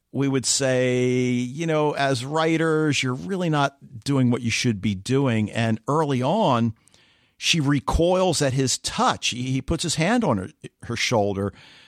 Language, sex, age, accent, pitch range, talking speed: English, male, 50-69, American, 110-145 Hz, 160 wpm